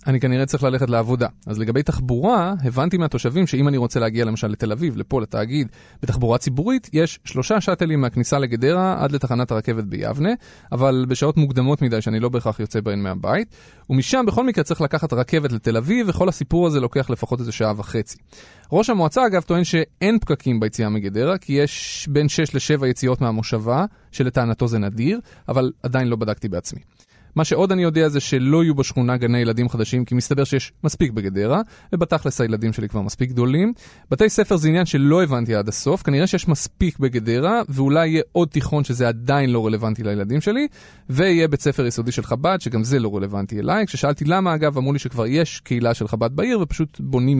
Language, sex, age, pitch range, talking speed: Hebrew, male, 30-49, 115-160 Hz, 175 wpm